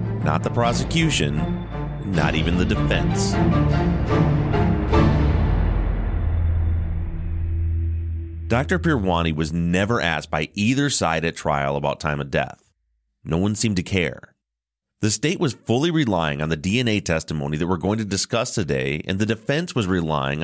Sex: male